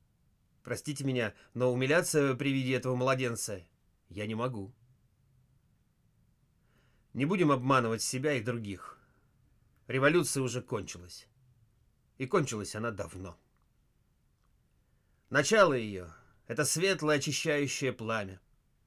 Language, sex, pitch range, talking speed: Russian, male, 110-140 Hz, 95 wpm